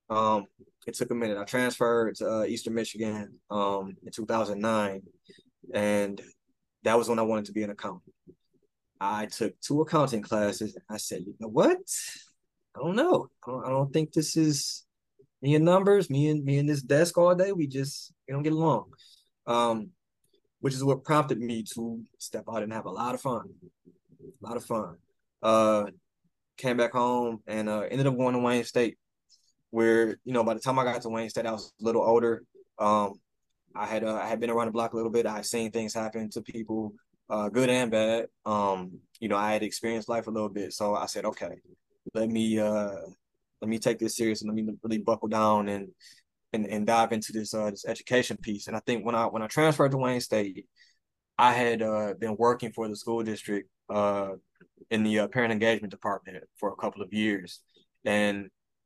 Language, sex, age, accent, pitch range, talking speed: English, male, 20-39, American, 105-125 Hz, 205 wpm